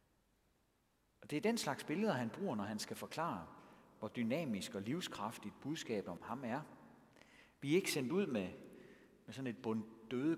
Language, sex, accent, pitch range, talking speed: Danish, male, native, 110-180 Hz, 175 wpm